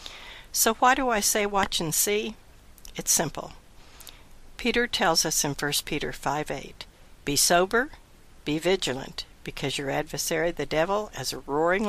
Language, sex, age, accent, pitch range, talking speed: English, female, 60-79, American, 140-170 Hz, 145 wpm